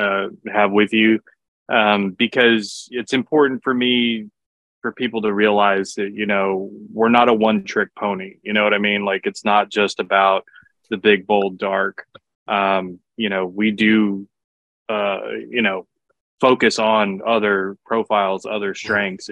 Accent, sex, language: American, male, English